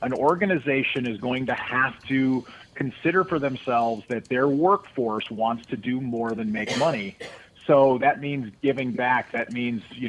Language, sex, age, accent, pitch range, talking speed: English, male, 40-59, American, 120-155 Hz, 165 wpm